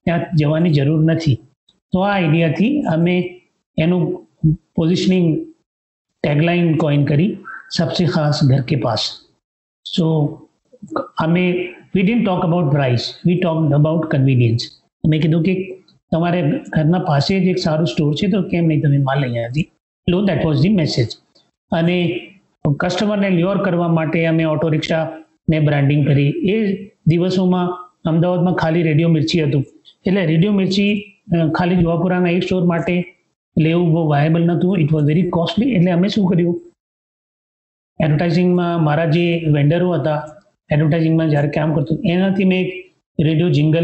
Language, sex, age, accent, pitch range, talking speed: English, male, 30-49, Indian, 155-180 Hz, 80 wpm